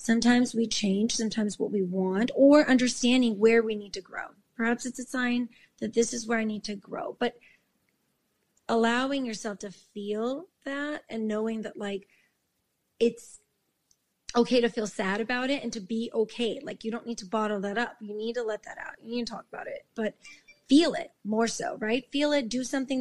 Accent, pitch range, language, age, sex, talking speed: American, 210-245 Hz, English, 30-49, female, 200 wpm